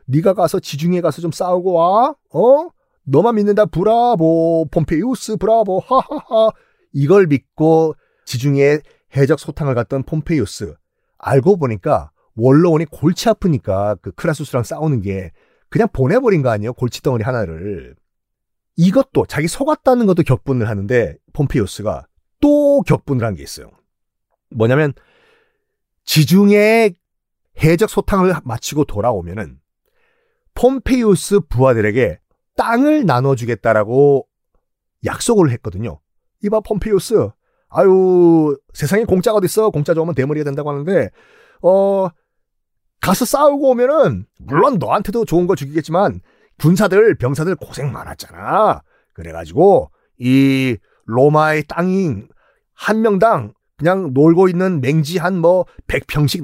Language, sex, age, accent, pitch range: Korean, male, 40-59, native, 135-205 Hz